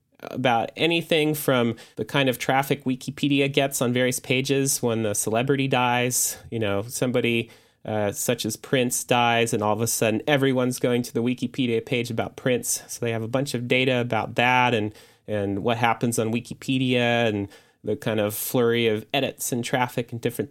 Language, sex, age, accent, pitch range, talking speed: English, male, 30-49, American, 115-135 Hz, 185 wpm